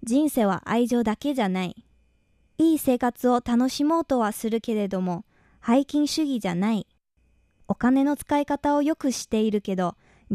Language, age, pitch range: Japanese, 20-39, 205-285 Hz